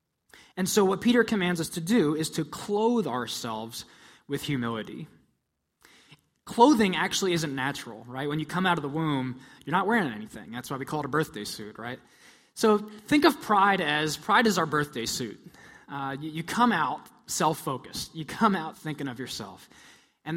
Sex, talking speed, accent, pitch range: male, 185 wpm, American, 130-195 Hz